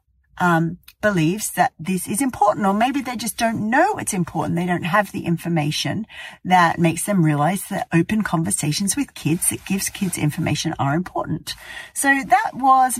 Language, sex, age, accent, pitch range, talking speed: English, female, 40-59, Australian, 155-210 Hz, 170 wpm